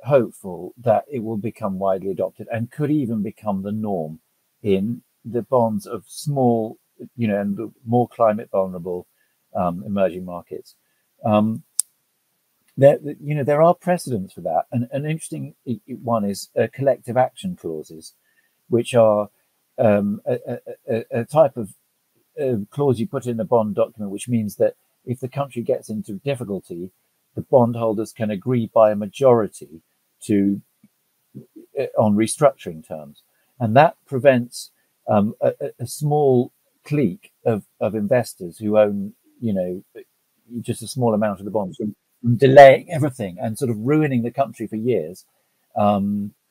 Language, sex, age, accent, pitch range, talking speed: English, male, 50-69, British, 105-145 Hz, 150 wpm